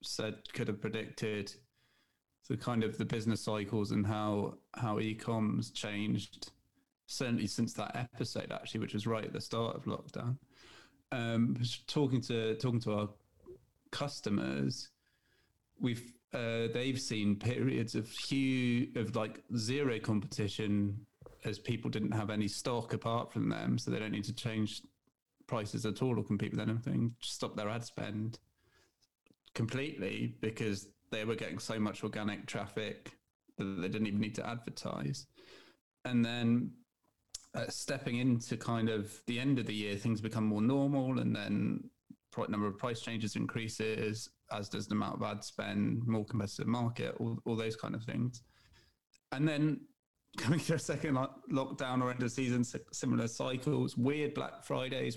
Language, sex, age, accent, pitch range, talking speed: English, male, 30-49, British, 105-125 Hz, 160 wpm